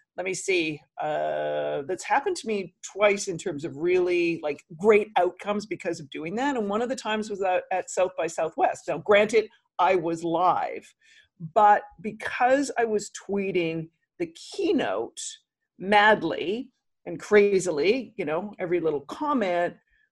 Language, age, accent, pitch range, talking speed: English, 50-69, American, 185-260 Hz, 150 wpm